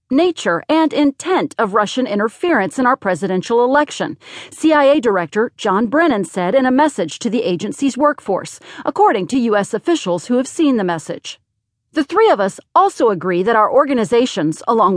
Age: 40-59